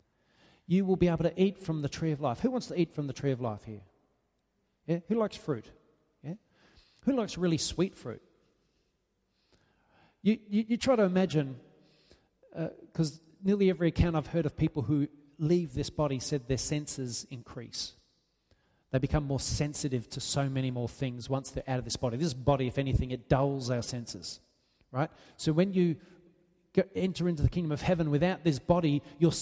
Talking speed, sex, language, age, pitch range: 180 wpm, male, English, 30-49, 135-175 Hz